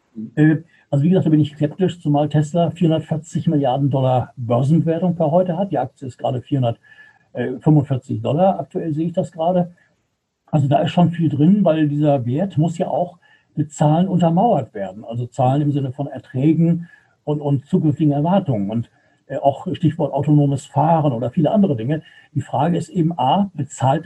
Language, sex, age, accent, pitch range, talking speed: German, male, 60-79, German, 140-170 Hz, 170 wpm